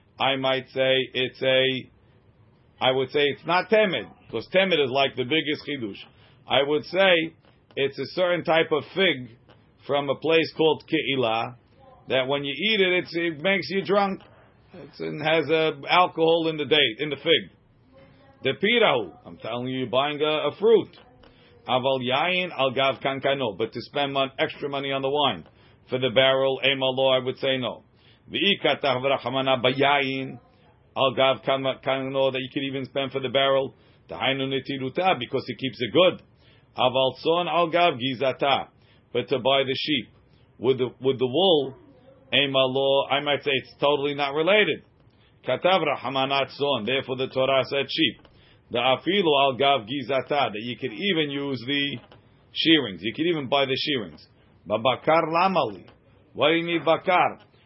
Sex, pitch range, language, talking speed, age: male, 130-150 Hz, English, 160 wpm, 40-59